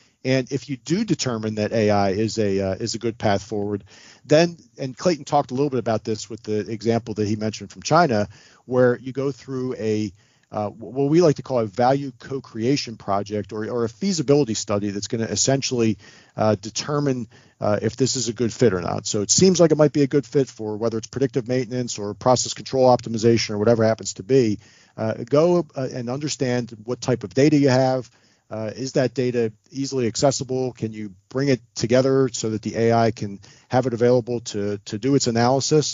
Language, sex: English, male